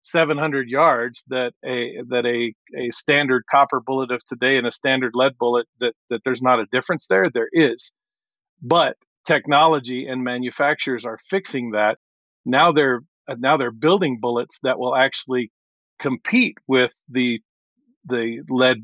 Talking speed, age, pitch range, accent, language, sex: 155 wpm, 40-59, 120-145 Hz, American, English, male